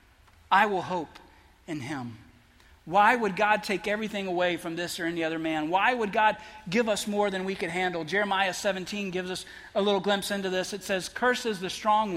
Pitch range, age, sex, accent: 180-230 Hz, 40-59, male, American